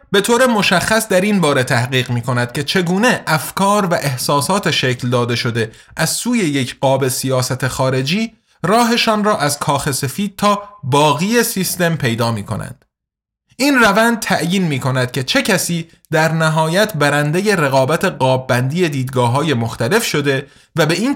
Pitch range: 130-195 Hz